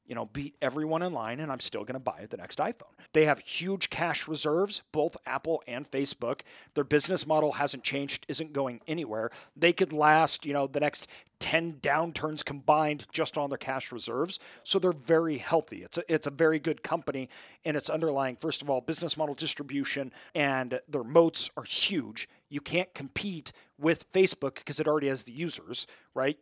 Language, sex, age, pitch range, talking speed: English, male, 40-59, 135-160 Hz, 190 wpm